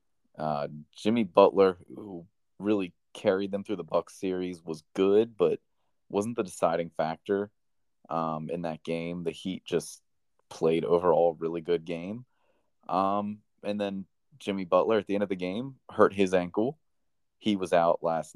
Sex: male